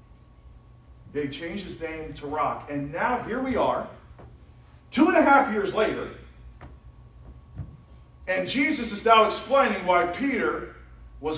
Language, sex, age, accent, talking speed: English, male, 40-59, American, 130 wpm